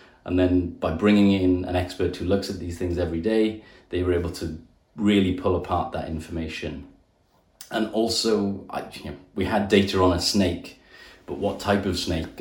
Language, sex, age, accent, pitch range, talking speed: English, male, 30-49, British, 85-100 Hz, 190 wpm